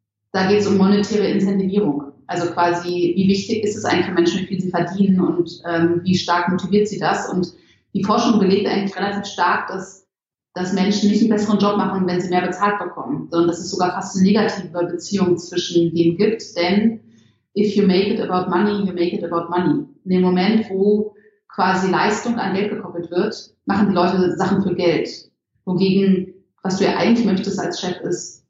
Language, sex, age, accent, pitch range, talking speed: German, female, 30-49, German, 175-205 Hz, 200 wpm